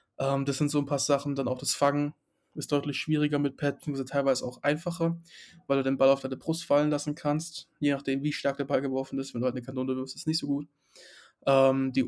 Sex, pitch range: male, 135-150 Hz